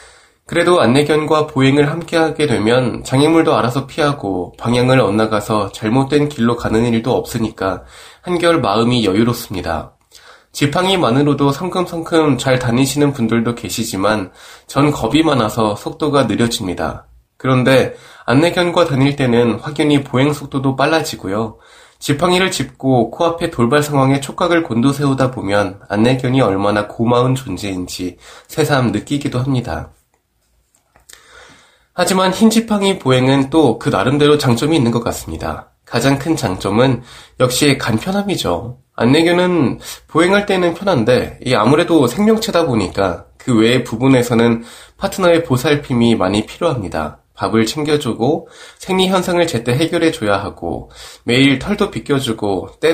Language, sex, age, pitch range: Korean, male, 20-39, 115-160 Hz